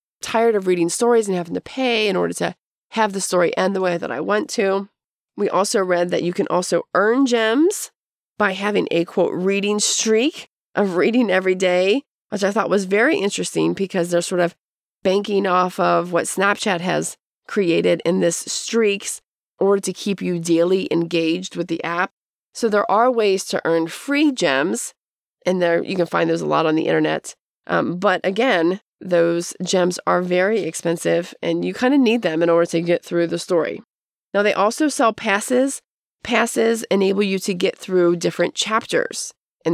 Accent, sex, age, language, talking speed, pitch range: American, female, 30-49, English, 185 wpm, 175-220 Hz